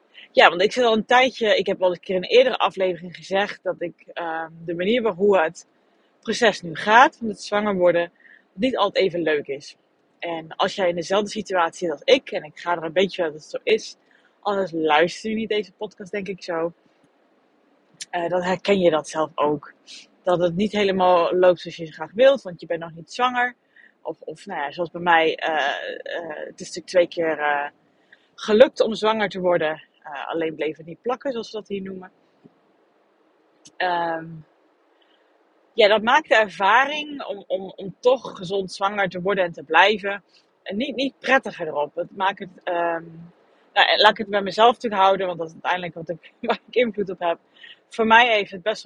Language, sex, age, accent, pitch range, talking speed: Dutch, female, 20-39, Dutch, 170-220 Hz, 205 wpm